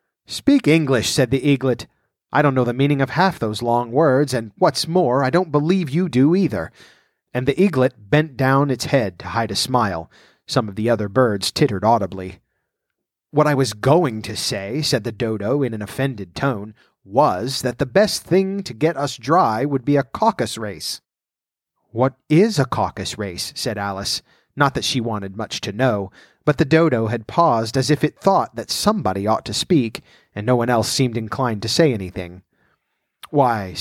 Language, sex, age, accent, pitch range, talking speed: English, male, 30-49, American, 110-150 Hz, 190 wpm